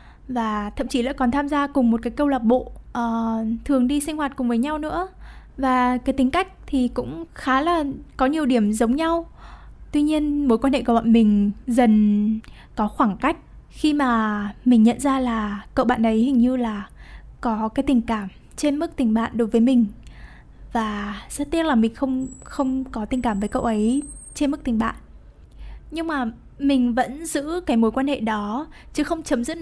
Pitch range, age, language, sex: 225-280 Hz, 10-29, Vietnamese, female